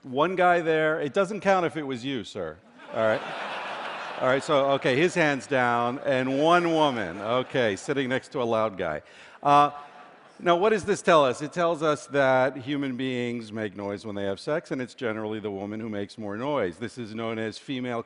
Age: 50-69